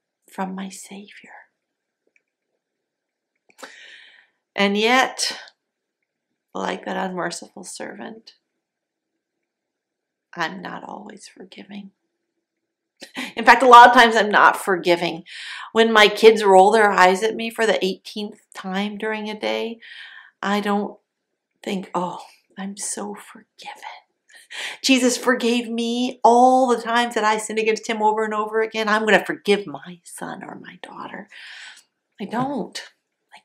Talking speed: 125 wpm